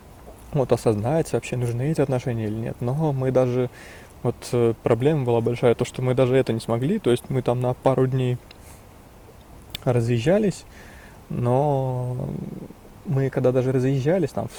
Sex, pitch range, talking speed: male, 115-130 Hz, 150 wpm